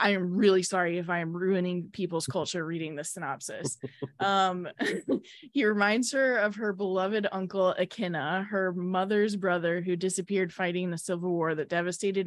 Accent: American